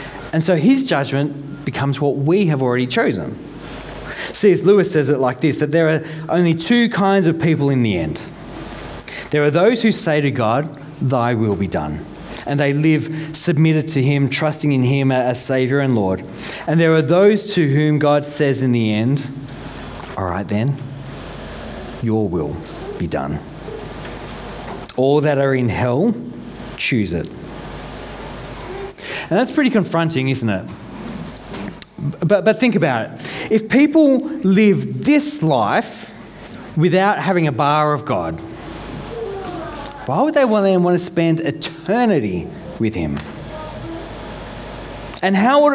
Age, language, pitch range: 40-59, English, 135-190 Hz